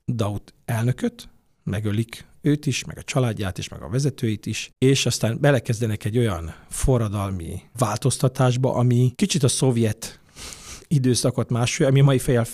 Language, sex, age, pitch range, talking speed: Hungarian, male, 50-69, 105-130 Hz, 140 wpm